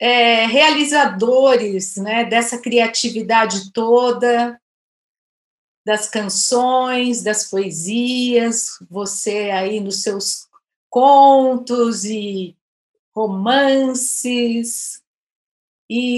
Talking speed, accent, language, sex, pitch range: 65 wpm, Brazilian, Portuguese, female, 220-265 Hz